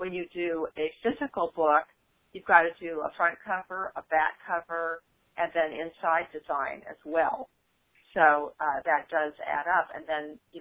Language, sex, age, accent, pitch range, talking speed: English, female, 40-59, American, 155-175 Hz, 175 wpm